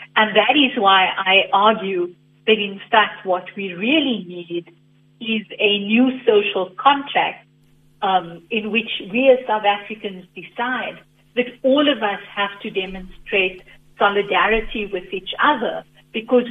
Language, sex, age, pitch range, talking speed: English, female, 50-69, 195-245 Hz, 140 wpm